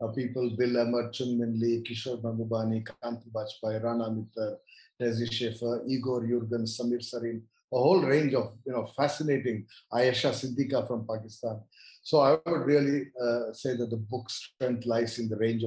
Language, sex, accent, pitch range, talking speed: English, male, Indian, 115-145 Hz, 155 wpm